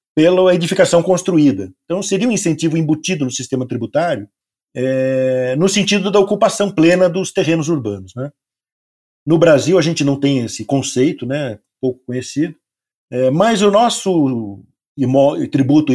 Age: 50-69